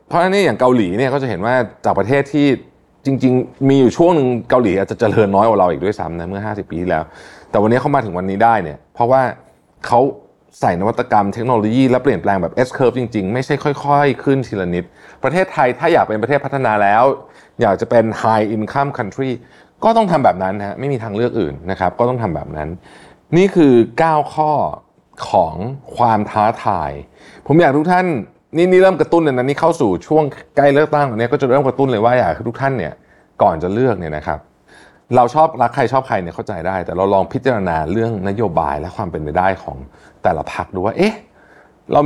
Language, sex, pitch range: Thai, male, 100-140 Hz